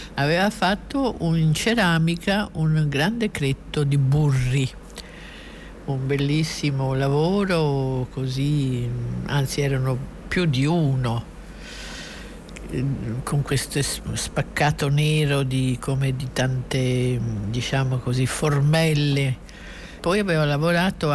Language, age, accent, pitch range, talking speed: Italian, 60-79, native, 130-155 Hz, 90 wpm